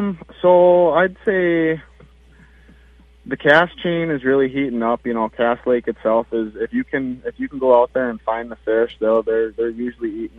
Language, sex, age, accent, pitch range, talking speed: English, male, 20-39, American, 95-125 Hz, 195 wpm